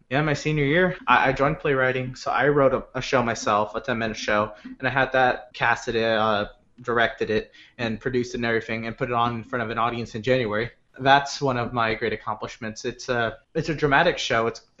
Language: English